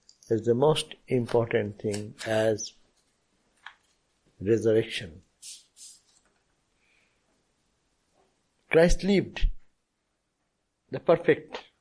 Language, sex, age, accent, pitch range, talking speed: English, male, 60-79, Indian, 110-150 Hz, 55 wpm